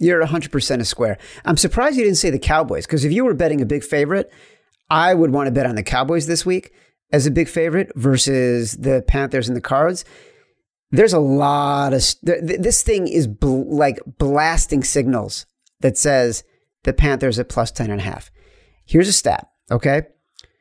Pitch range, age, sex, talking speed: 125-160 Hz, 40-59, male, 180 wpm